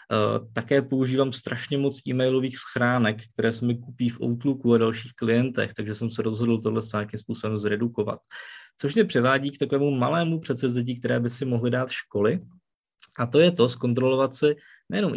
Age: 20-39